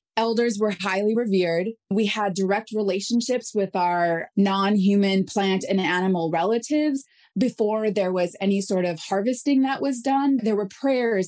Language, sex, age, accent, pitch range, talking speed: English, female, 20-39, American, 185-235 Hz, 150 wpm